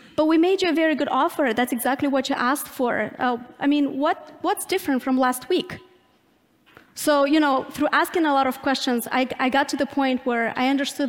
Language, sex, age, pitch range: English, female, 20-39, 250-310 Hz